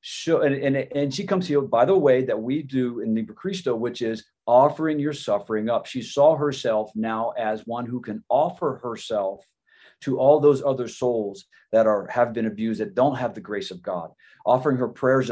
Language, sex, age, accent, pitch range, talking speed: English, male, 40-59, American, 115-155 Hz, 205 wpm